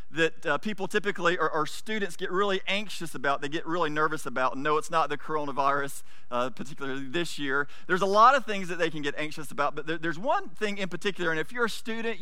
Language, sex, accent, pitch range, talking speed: English, male, American, 160-195 Hz, 230 wpm